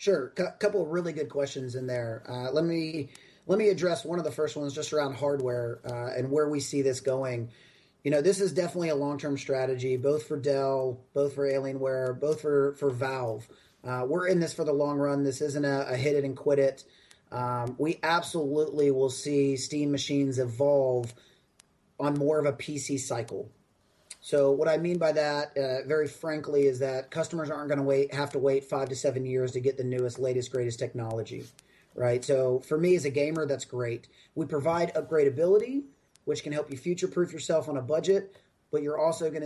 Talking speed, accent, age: 205 wpm, American, 30-49